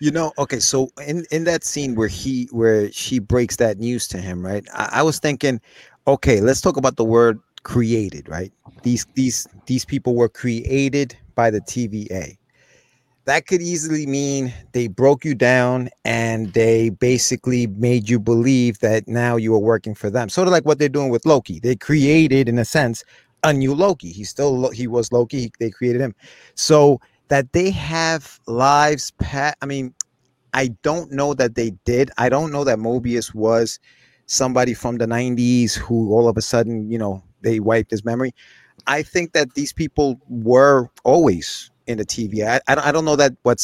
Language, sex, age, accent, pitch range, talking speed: English, male, 30-49, American, 115-135 Hz, 185 wpm